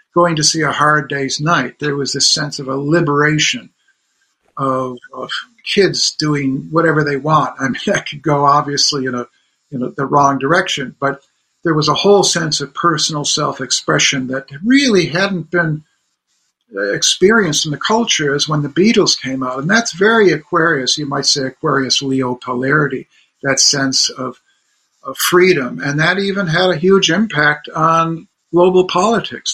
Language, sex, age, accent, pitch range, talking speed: English, male, 50-69, American, 140-170 Hz, 165 wpm